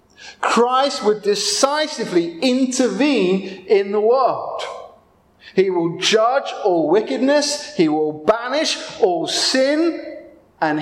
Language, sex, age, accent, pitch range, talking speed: English, male, 30-49, British, 180-300 Hz, 100 wpm